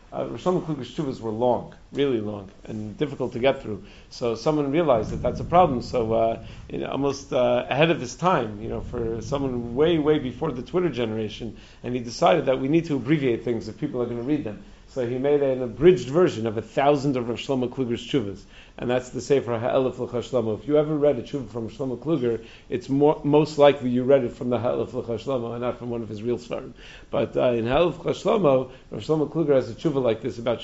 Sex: male